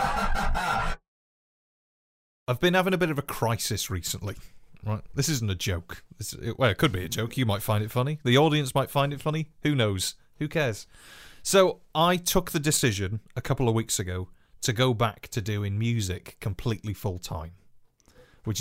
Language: English